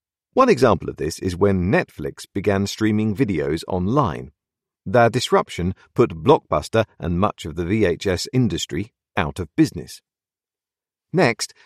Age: 50-69